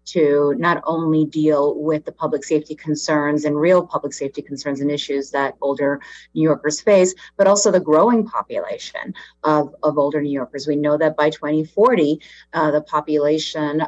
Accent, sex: American, female